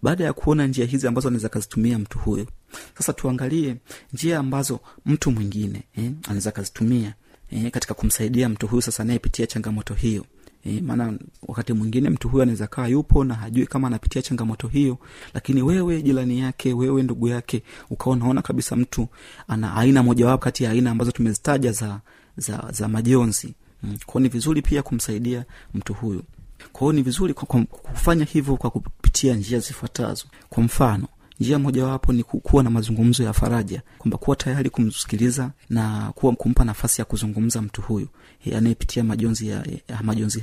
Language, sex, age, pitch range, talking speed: Swahili, male, 30-49, 110-130 Hz, 165 wpm